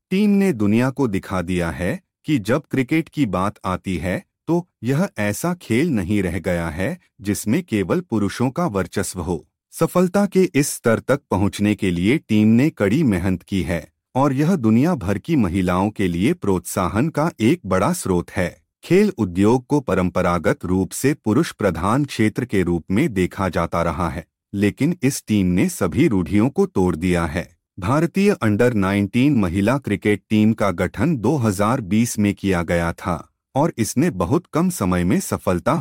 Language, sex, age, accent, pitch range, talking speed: Hindi, male, 30-49, native, 90-140 Hz, 170 wpm